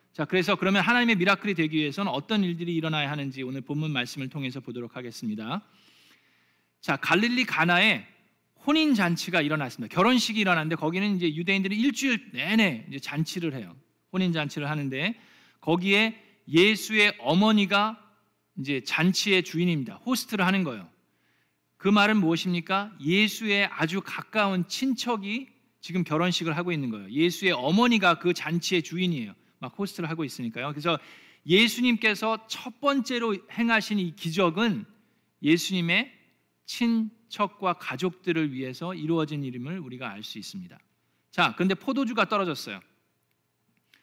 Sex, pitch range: male, 155-215 Hz